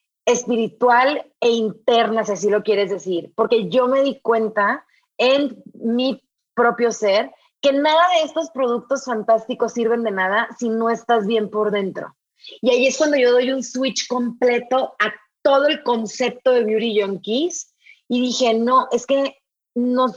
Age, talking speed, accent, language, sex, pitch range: 30-49, 160 wpm, Mexican, English, female, 210-255 Hz